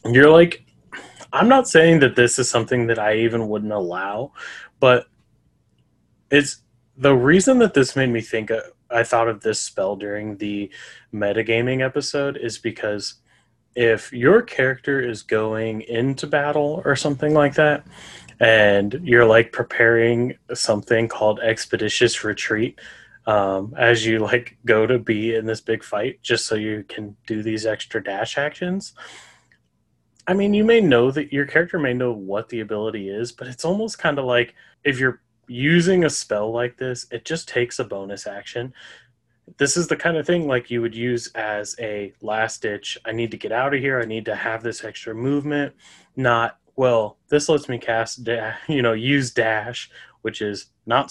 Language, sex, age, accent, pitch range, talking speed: English, male, 20-39, American, 110-140 Hz, 175 wpm